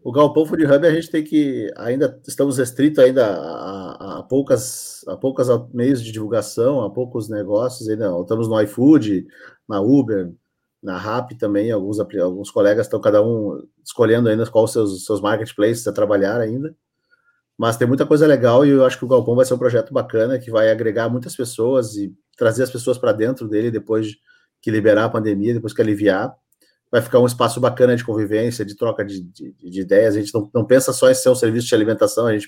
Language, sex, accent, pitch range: Portuguese, male, Brazilian, 110-130 Hz